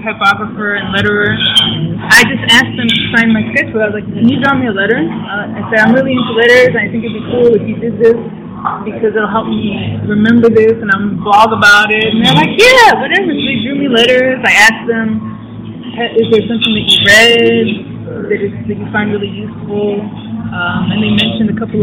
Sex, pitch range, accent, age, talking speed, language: female, 205-230 Hz, American, 20-39, 215 wpm, English